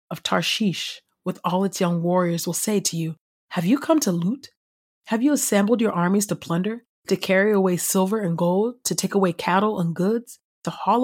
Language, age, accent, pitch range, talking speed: English, 30-49, American, 175-205 Hz, 200 wpm